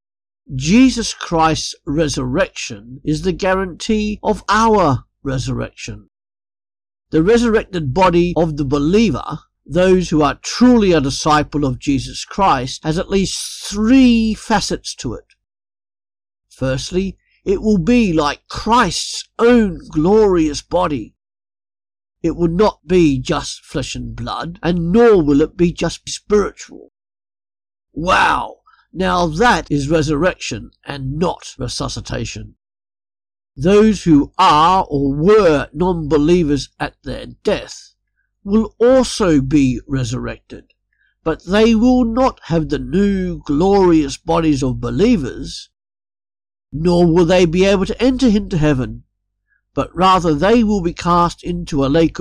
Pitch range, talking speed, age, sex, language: 130-190 Hz, 120 wpm, 50-69, male, English